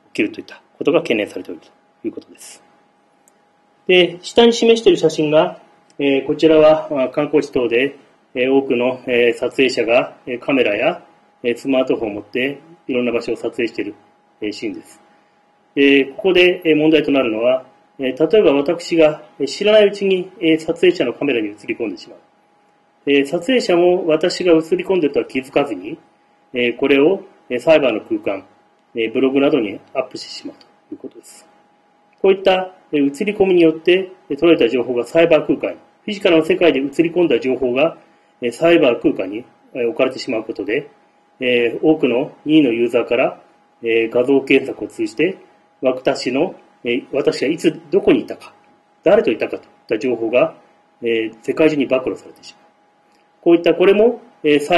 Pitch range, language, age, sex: 130-180 Hz, Japanese, 30-49, male